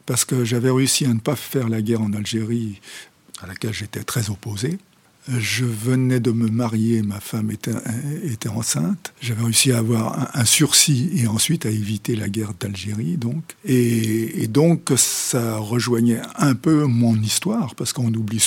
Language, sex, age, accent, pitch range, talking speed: French, male, 60-79, French, 115-145 Hz, 170 wpm